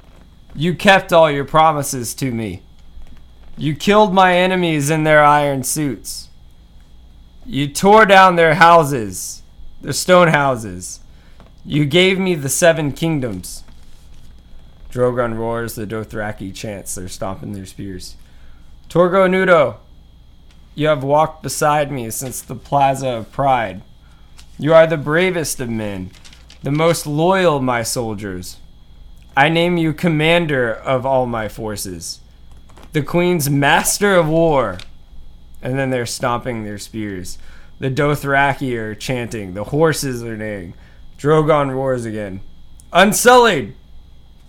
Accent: American